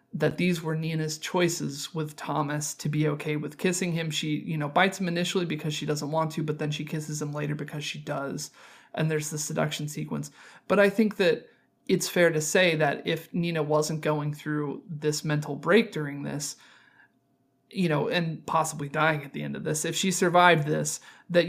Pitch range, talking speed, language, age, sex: 150-175 Hz, 200 wpm, English, 30-49, male